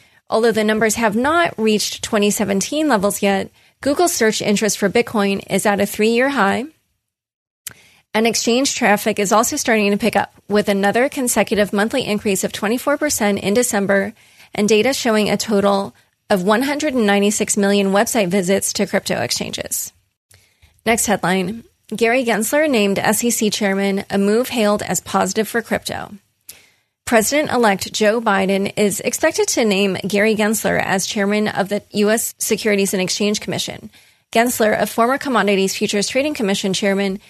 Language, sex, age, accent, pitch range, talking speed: English, female, 30-49, American, 200-230 Hz, 145 wpm